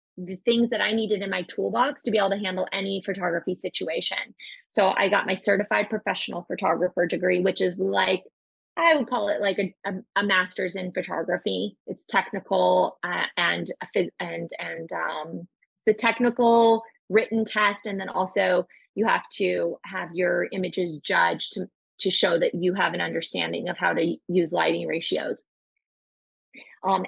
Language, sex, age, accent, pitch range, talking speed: English, female, 20-39, American, 180-205 Hz, 170 wpm